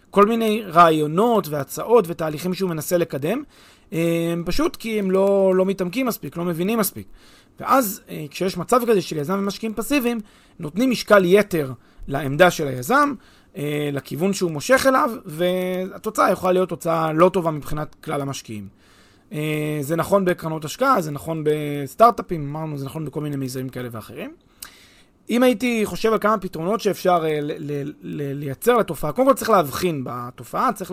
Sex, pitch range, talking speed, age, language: male, 155-210 Hz, 155 wpm, 30-49, Hebrew